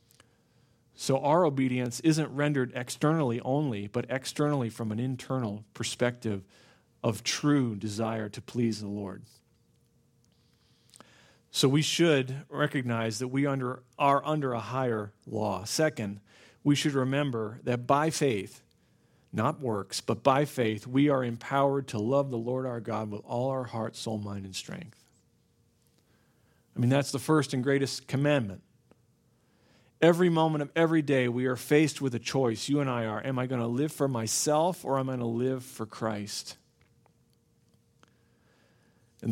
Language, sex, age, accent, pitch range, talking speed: English, male, 40-59, American, 115-145 Hz, 155 wpm